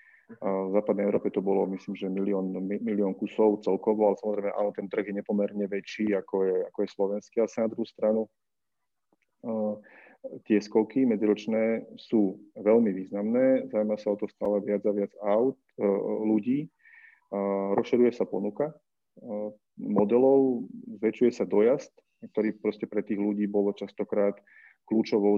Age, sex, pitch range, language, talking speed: 30-49, male, 100-110 Hz, Slovak, 145 wpm